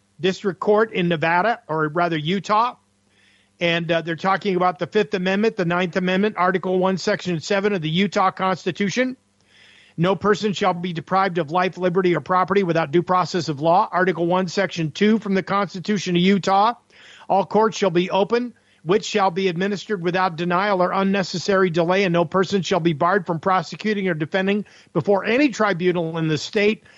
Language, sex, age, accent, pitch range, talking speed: English, male, 50-69, American, 170-210 Hz, 180 wpm